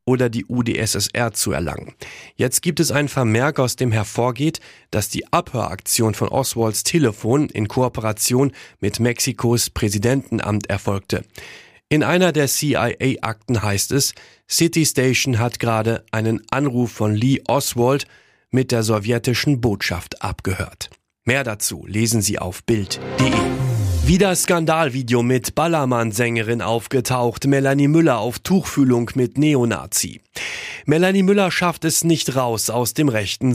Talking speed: 125 wpm